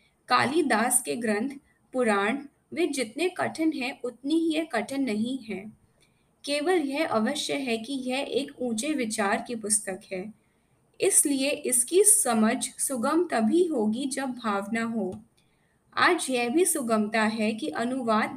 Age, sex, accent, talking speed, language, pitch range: 20-39, female, native, 135 wpm, Hindi, 220-300 Hz